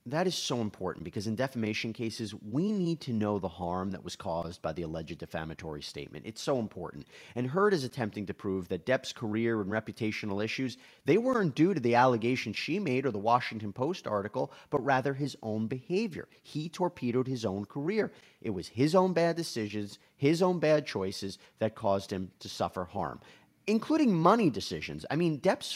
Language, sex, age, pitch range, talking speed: English, male, 30-49, 105-175 Hz, 190 wpm